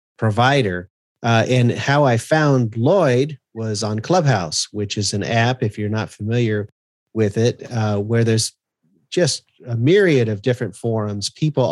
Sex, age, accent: male, 30-49, American